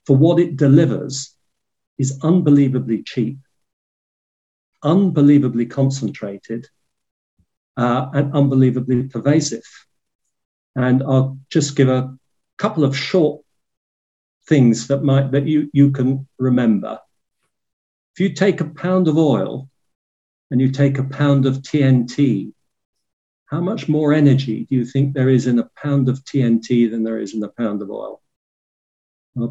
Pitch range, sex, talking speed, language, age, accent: 115-145 Hz, male, 135 wpm, English, 50-69, British